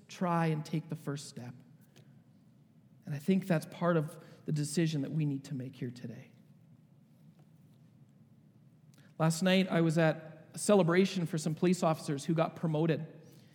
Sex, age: male, 40-59